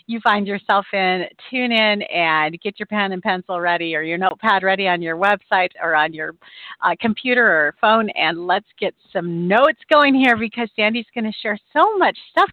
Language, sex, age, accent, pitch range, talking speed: English, female, 40-59, American, 190-270 Hz, 200 wpm